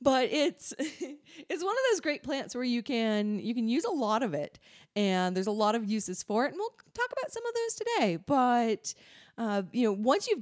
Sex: female